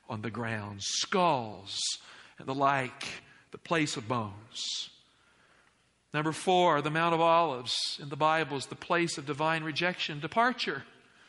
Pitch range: 140-200 Hz